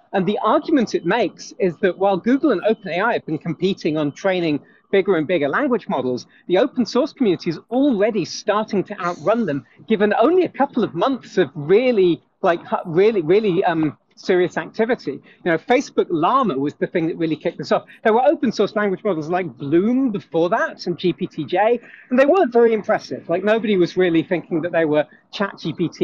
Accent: British